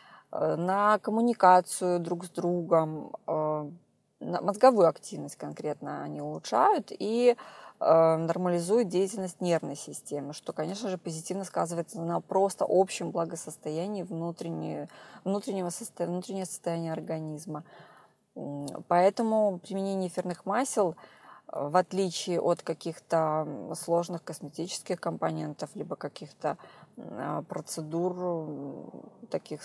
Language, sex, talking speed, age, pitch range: Russian, female, 85 wpm, 20-39, 165-220 Hz